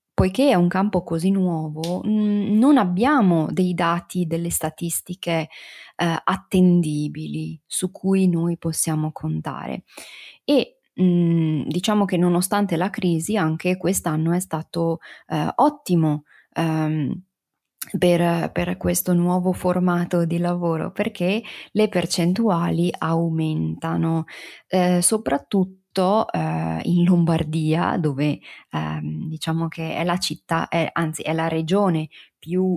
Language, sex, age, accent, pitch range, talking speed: Italian, female, 20-39, native, 160-185 Hz, 110 wpm